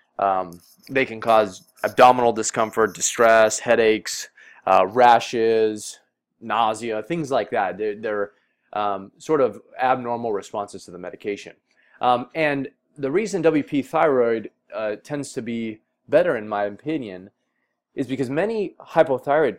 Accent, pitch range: American, 105-140 Hz